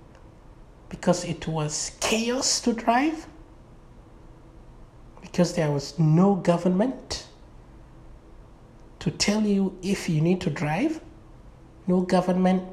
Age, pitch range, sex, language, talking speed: 60-79, 160-210 Hz, male, English, 100 wpm